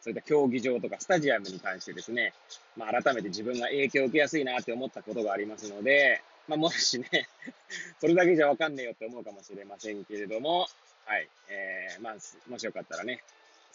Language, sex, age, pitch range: Japanese, male, 20-39, 110-155 Hz